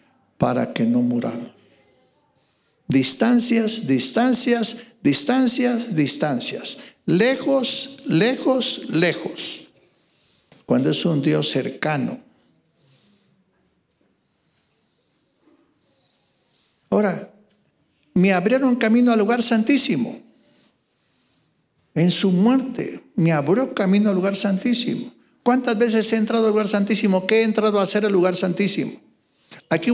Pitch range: 160-240 Hz